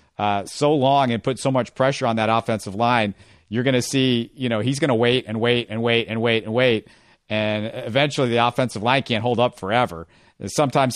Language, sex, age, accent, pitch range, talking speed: English, male, 50-69, American, 110-125 Hz, 220 wpm